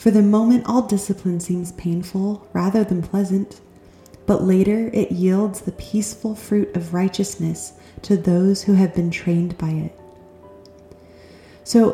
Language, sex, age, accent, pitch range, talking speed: English, female, 30-49, American, 175-215 Hz, 140 wpm